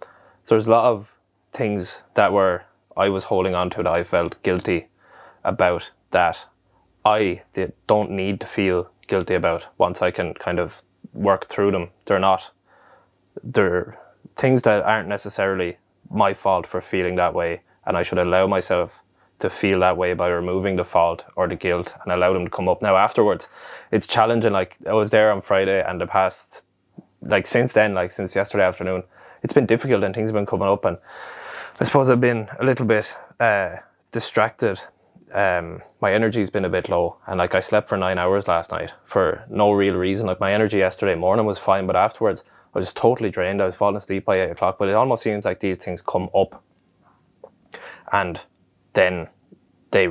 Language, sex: English, male